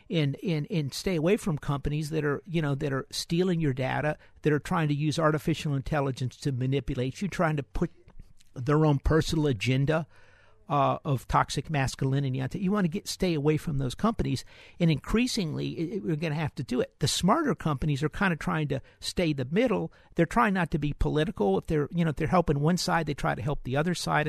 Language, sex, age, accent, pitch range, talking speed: English, male, 50-69, American, 140-175 Hz, 225 wpm